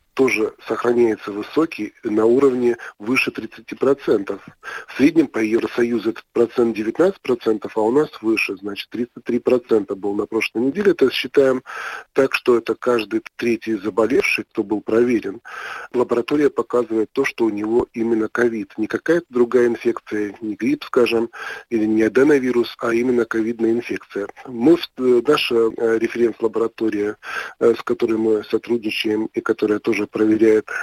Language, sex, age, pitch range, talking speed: Russian, male, 40-59, 110-130 Hz, 130 wpm